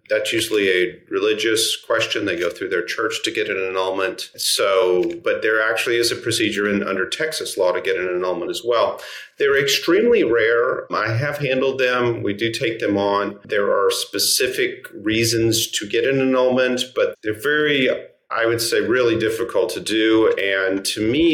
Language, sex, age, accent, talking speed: English, male, 40-59, American, 175 wpm